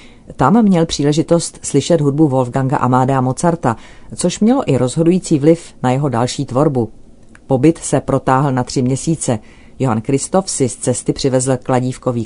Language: Czech